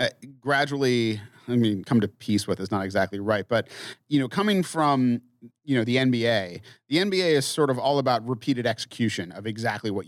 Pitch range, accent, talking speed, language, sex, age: 115-140 Hz, American, 195 wpm, English, male, 30-49